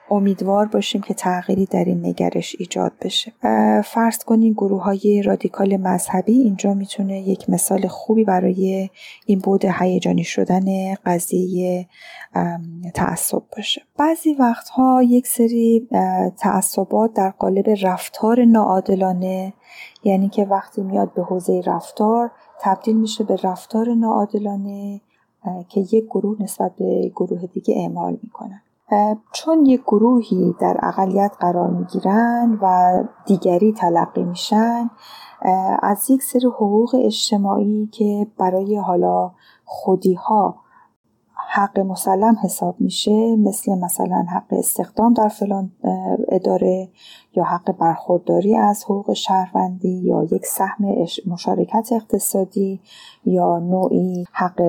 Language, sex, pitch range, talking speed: Persian, female, 185-225 Hz, 115 wpm